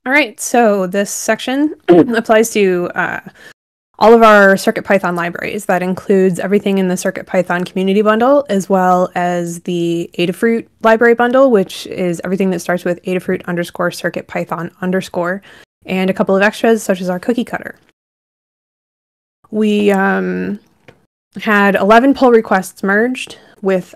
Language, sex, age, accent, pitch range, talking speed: English, female, 20-39, American, 175-215 Hz, 140 wpm